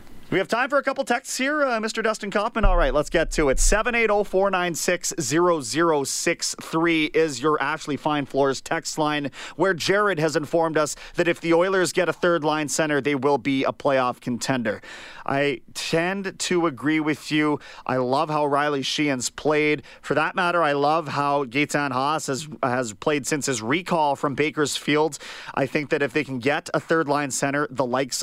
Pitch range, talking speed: 130-165 Hz, 185 wpm